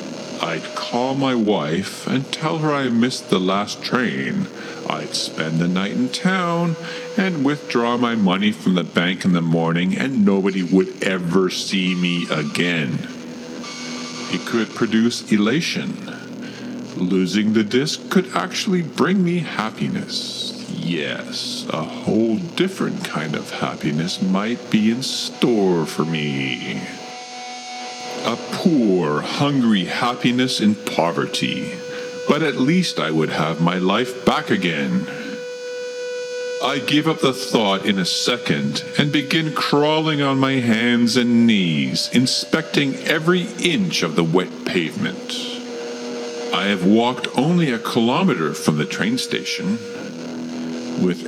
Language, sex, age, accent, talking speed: English, female, 50-69, American, 130 wpm